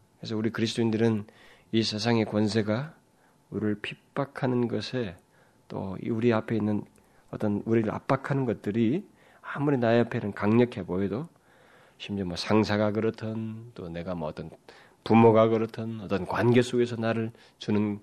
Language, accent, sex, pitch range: Korean, native, male, 105-130 Hz